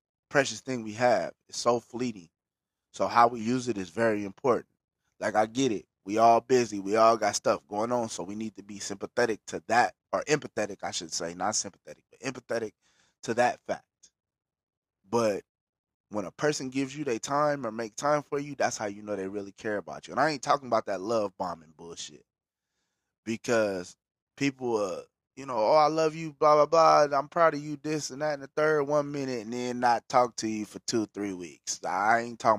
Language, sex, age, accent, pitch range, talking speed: English, male, 20-39, American, 105-140 Hz, 215 wpm